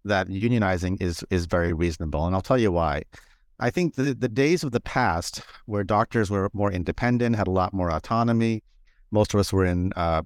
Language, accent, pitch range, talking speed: English, American, 90-115 Hz, 205 wpm